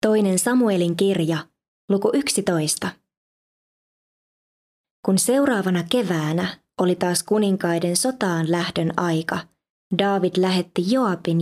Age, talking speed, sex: 20-39, 90 wpm, female